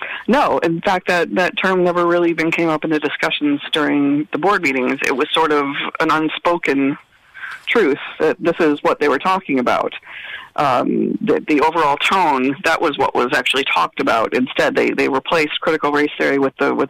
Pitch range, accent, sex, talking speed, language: 140-160 Hz, American, female, 195 wpm, English